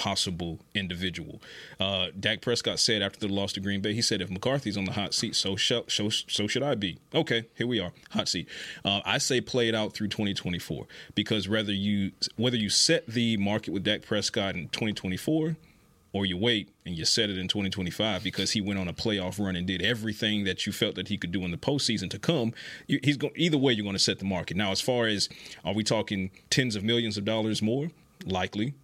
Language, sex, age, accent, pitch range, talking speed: English, male, 30-49, American, 100-120 Hz, 225 wpm